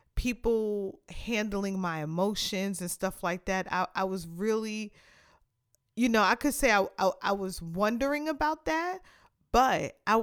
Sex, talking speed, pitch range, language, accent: female, 155 wpm, 180-215 Hz, English, American